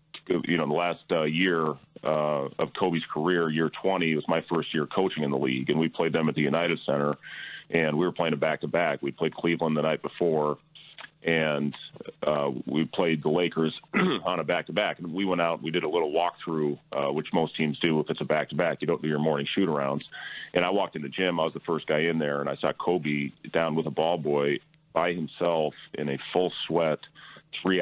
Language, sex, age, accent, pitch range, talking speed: English, male, 30-49, American, 75-85 Hz, 220 wpm